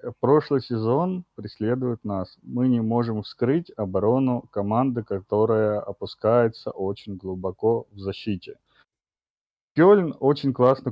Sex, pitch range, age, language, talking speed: male, 105-125 Hz, 30-49, Russian, 105 wpm